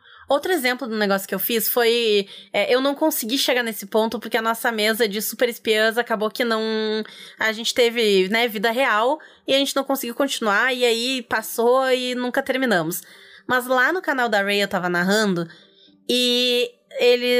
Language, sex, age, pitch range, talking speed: Portuguese, female, 20-39, 205-275 Hz, 185 wpm